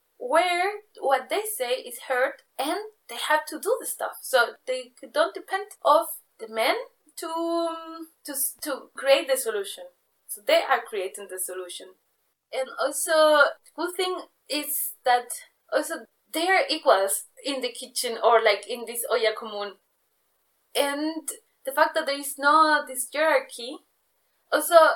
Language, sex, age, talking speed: German, female, 20-39, 150 wpm